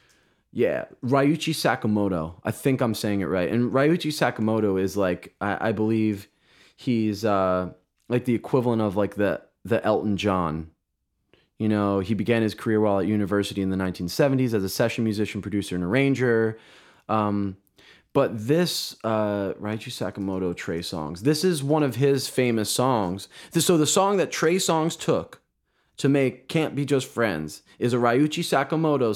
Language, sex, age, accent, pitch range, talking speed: English, male, 20-39, American, 105-140 Hz, 165 wpm